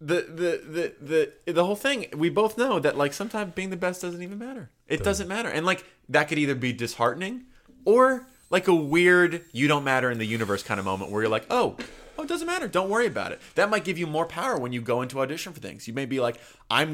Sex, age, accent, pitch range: male, 20-39, American, 110-155 Hz